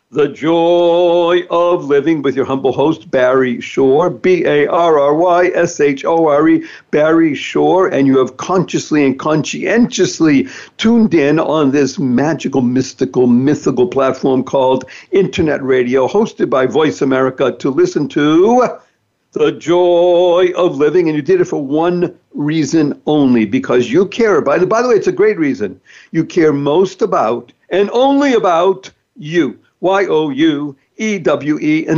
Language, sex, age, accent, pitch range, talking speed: English, male, 60-79, American, 135-185 Hz, 135 wpm